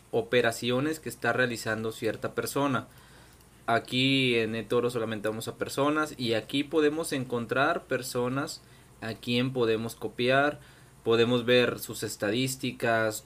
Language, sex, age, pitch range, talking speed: Spanish, male, 20-39, 110-135 Hz, 120 wpm